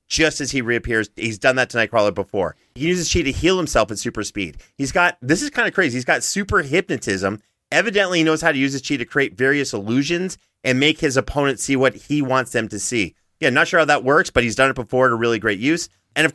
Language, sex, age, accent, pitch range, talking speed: English, male, 30-49, American, 115-145 Hz, 255 wpm